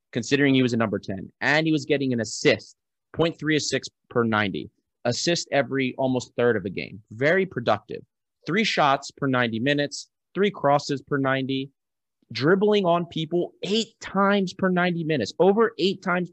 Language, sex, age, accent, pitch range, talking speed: English, male, 30-49, American, 115-150 Hz, 160 wpm